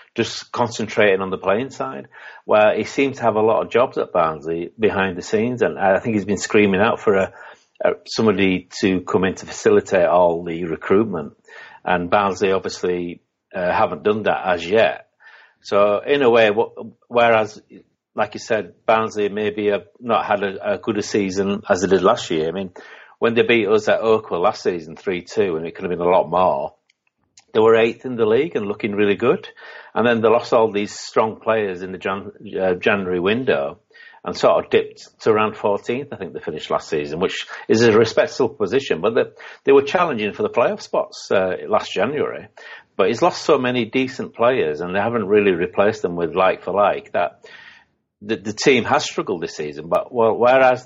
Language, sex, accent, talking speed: English, male, British, 200 wpm